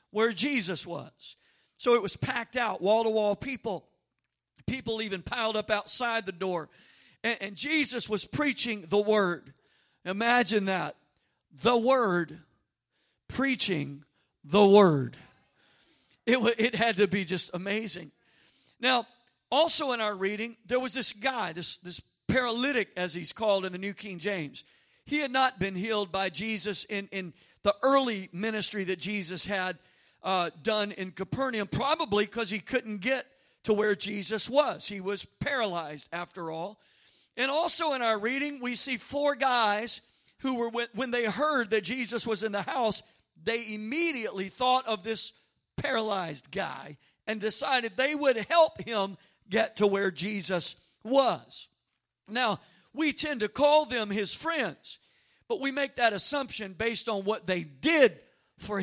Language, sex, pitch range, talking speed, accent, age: English, male, 195-245 Hz, 150 wpm, American, 50-69